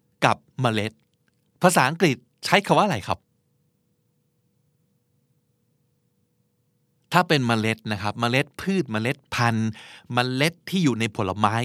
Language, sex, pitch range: Thai, male, 120-160 Hz